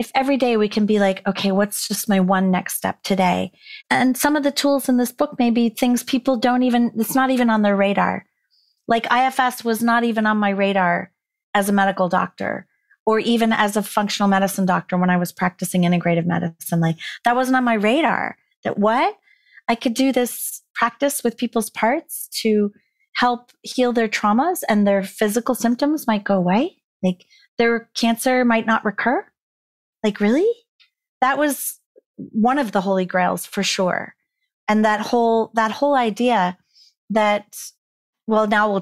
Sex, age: female, 30-49